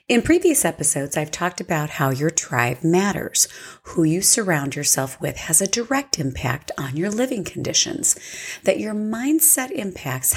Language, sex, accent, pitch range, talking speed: English, female, American, 150-240 Hz, 155 wpm